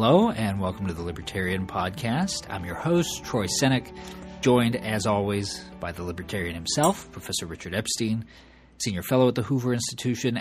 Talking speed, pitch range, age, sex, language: 160 wpm, 100-130 Hz, 40-59, male, English